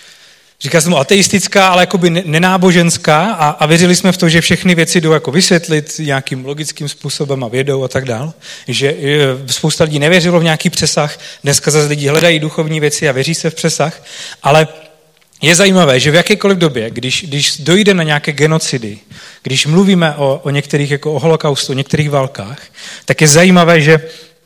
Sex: male